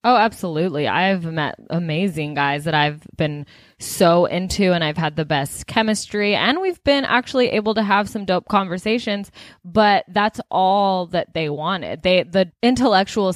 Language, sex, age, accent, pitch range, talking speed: English, female, 20-39, American, 165-210 Hz, 155 wpm